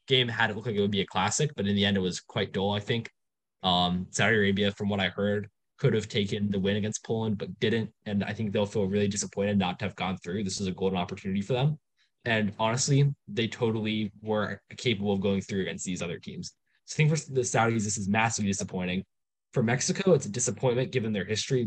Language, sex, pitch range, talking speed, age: English, male, 100-130 Hz, 240 wpm, 10-29